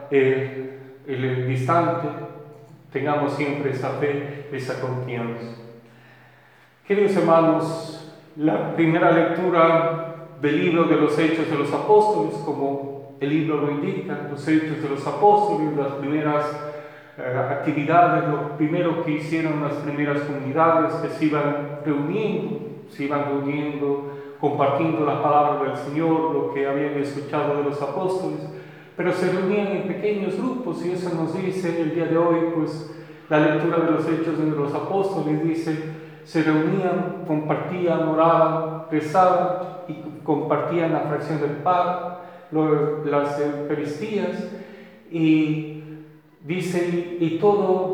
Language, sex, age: Spanish, male, 40-59